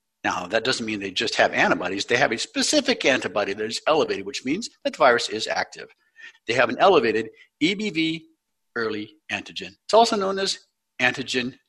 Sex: male